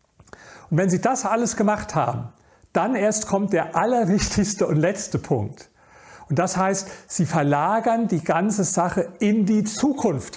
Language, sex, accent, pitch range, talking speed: German, male, German, 150-195 Hz, 150 wpm